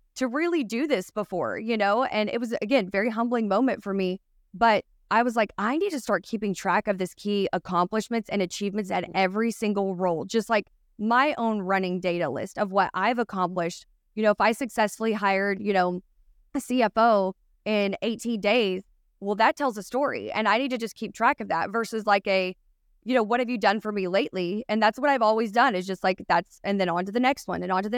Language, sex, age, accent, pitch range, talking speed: English, female, 20-39, American, 190-230 Hz, 230 wpm